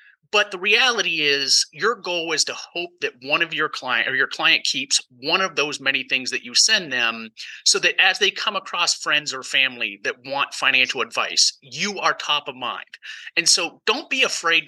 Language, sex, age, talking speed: English, male, 30-49, 205 wpm